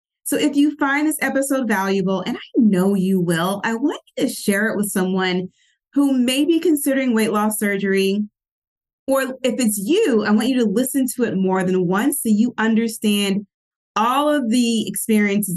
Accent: American